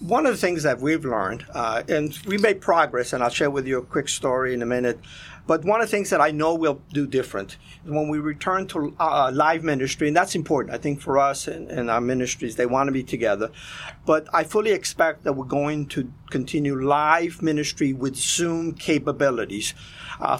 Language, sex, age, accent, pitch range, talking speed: English, male, 50-69, American, 135-165 Hz, 210 wpm